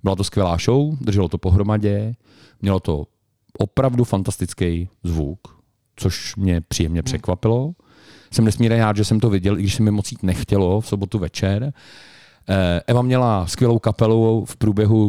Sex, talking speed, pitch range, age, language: male, 145 wpm, 95-130 Hz, 40-59, Czech